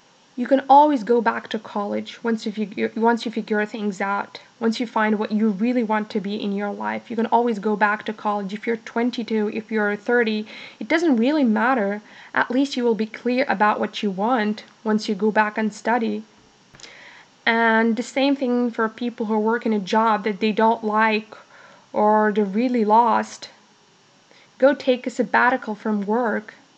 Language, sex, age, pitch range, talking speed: English, female, 20-39, 210-240 Hz, 185 wpm